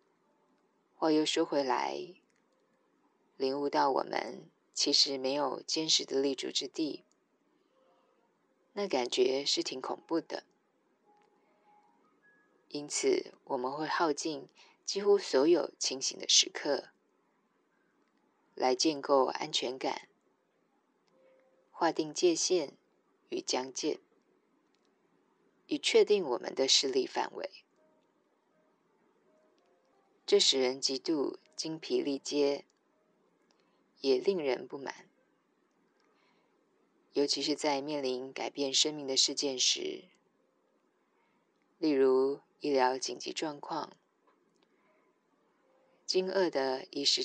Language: Chinese